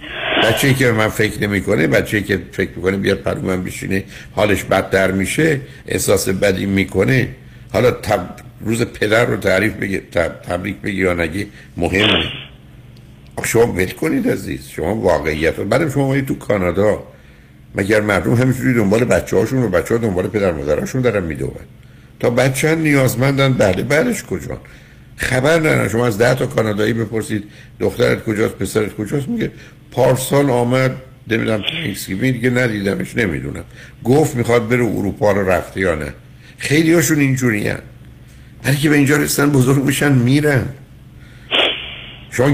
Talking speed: 145 wpm